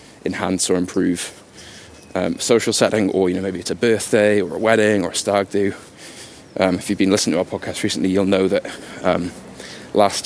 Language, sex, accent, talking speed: English, male, British, 200 wpm